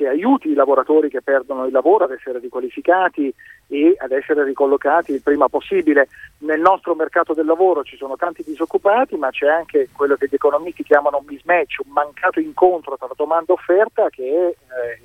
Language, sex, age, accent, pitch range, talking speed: Italian, male, 40-59, native, 140-230 Hz, 185 wpm